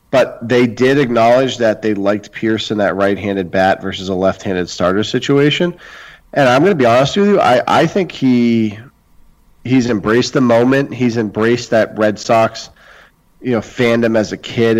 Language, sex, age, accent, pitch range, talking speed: English, male, 30-49, American, 95-125 Hz, 180 wpm